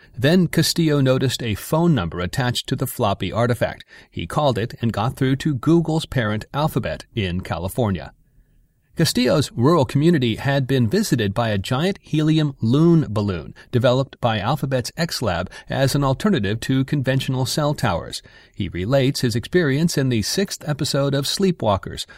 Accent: American